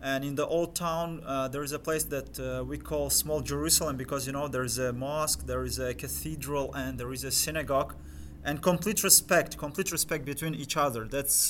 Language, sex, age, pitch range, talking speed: English, male, 20-39, 130-155 Hz, 215 wpm